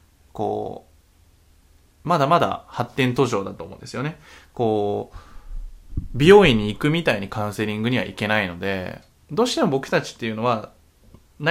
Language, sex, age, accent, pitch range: Japanese, male, 20-39, native, 105-165 Hz